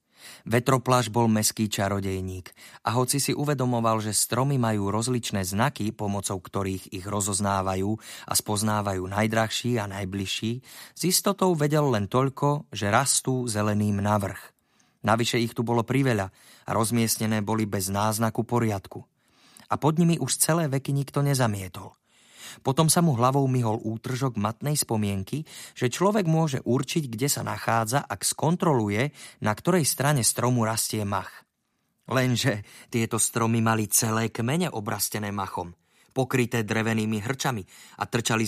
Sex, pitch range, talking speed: male, 105-130 Hz, 135 wpm